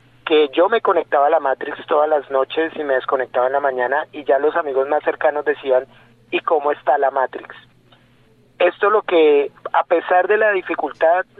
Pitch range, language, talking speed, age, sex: 135-165 Hz, Spanish, 190 wpm, 30-49, male